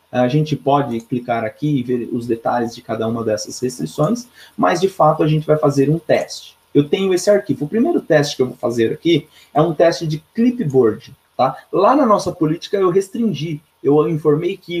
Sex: male